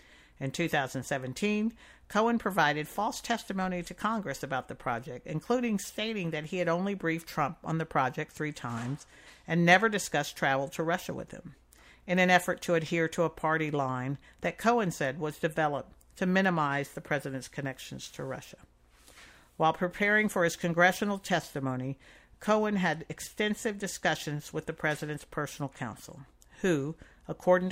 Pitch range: 140-185 Hz